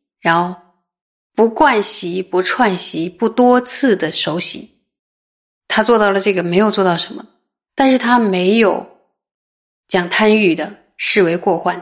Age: 20-39